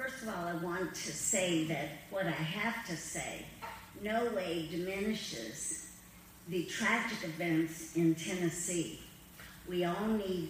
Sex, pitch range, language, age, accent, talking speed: female, 160-195 Hz, English, 50-69, American, 135 wpm